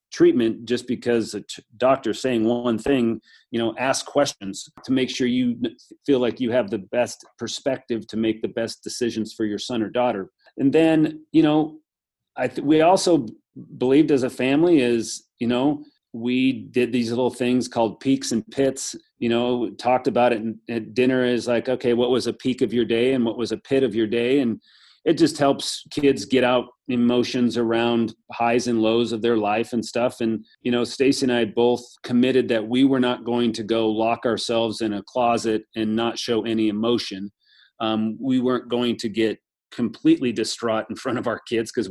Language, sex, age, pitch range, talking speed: English, male, 40-59, 110-125 Hz, 205 wpm